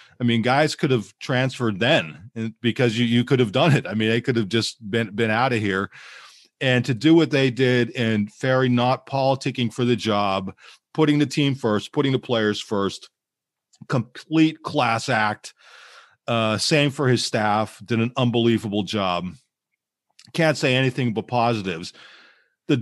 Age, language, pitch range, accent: 40-59, English, 105-130 Hz, American